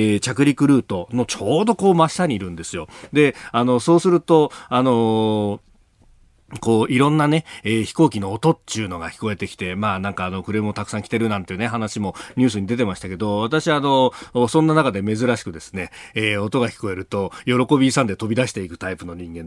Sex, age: male, 40-59